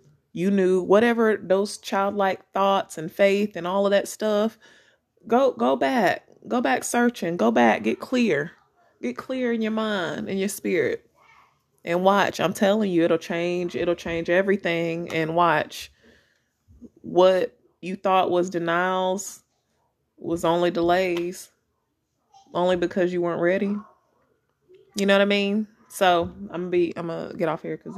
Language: English